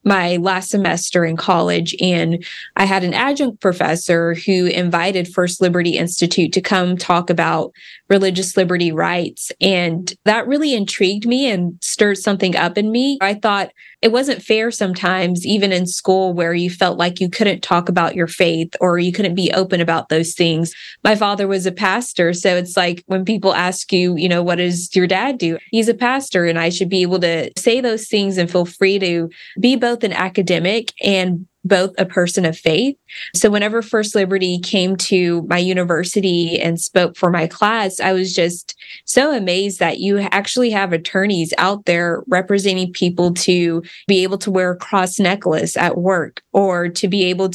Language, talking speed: English, 185 wpm